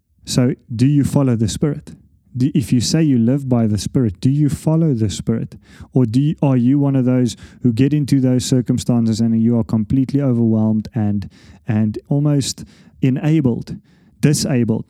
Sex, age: male, 30-49